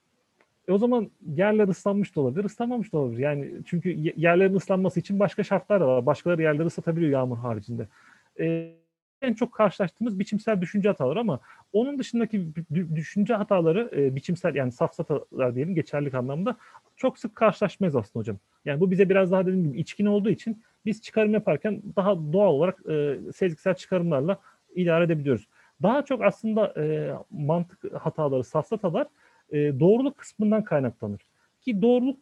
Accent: native